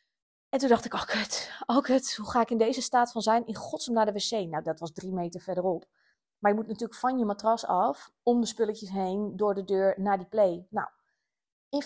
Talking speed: 240 wpm